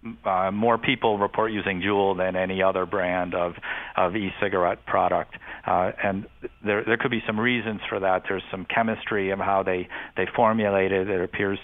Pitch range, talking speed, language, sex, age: 95-110 Hz, 180 wpm, English, male, 50-69